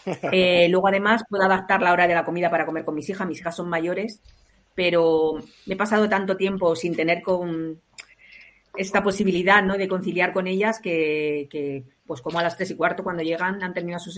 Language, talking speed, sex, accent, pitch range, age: Spanish, 205 wpm, female, Spanish, 160-185 Hz, 40-59